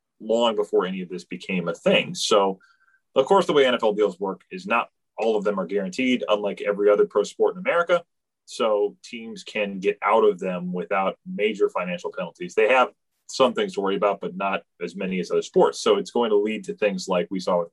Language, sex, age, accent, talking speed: English, male, 30-49, American, 225 wpm